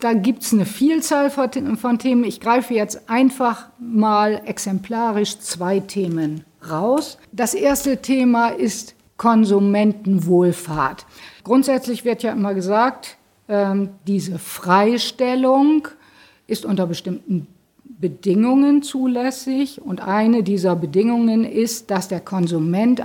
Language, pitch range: German, 195-245 Hz